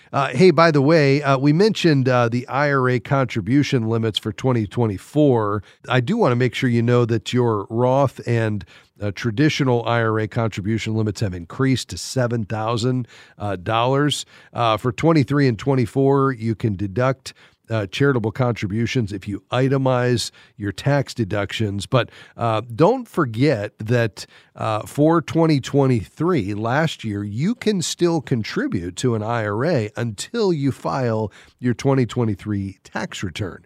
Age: 40-59